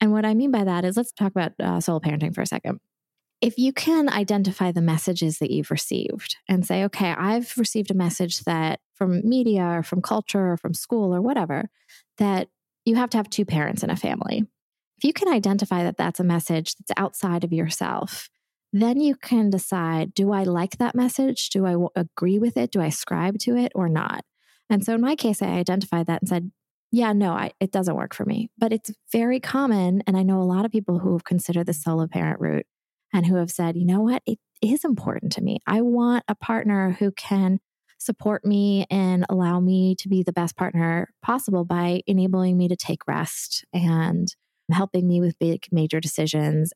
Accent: American